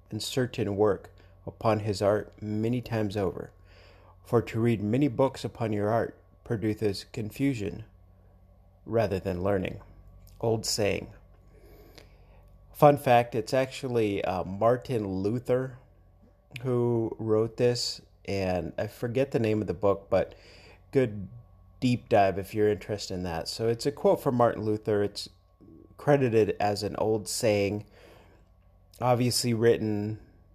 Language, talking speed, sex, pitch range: English, 130 wpm, male, 95-115 Hz